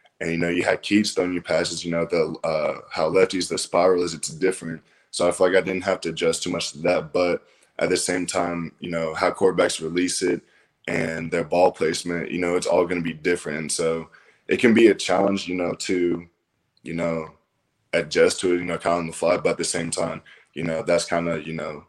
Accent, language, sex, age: American, English, male, 10-29